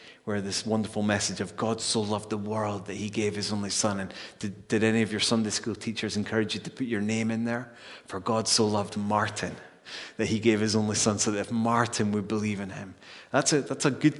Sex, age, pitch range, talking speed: male, 30-49, 100-115 Hz, 235 wpm